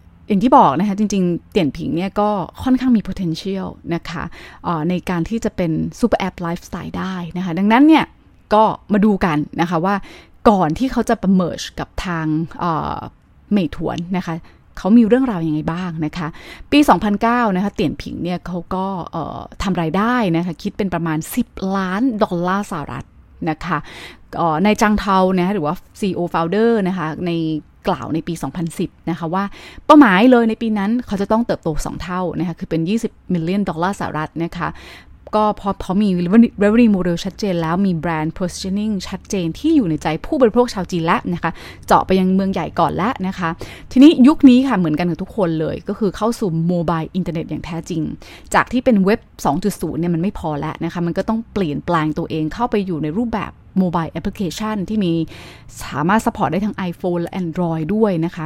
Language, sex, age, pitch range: Thai, female, 20-39, 165-210 Hz